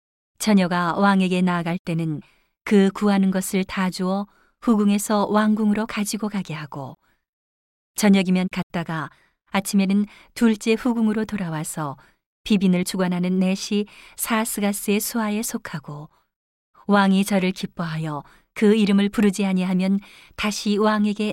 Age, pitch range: 40-59, 175-210 Hz